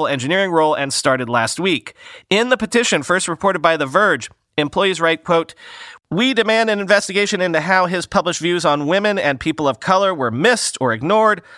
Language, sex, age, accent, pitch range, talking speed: English, male, 30-49, American, 125-195 Hz, 185 wpm